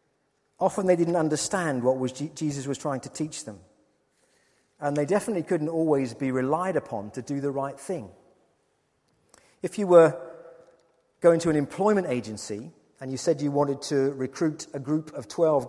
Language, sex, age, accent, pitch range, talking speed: English, male, 40-59, British, 125-170 Hz, 170 wpm